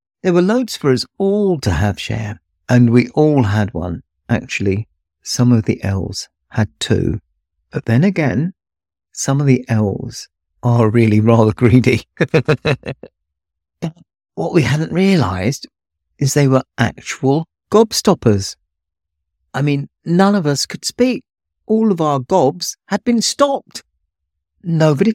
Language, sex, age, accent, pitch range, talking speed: English, male, 50-69, British, 95-145 Hz, 135 wpm